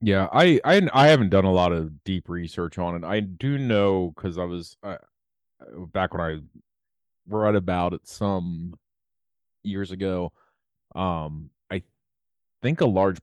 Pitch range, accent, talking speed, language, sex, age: 85-100 Hz, American, 150 wpm, English, male, 30-49